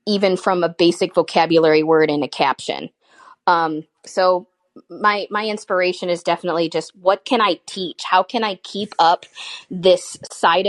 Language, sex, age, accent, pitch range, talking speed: English, female, 20-39, American, 170-195 Hz, 155 wpm